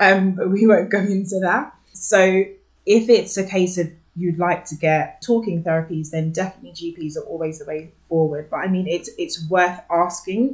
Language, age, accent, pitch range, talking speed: English, 20-39, British, 165-200 Hz, 195 wpm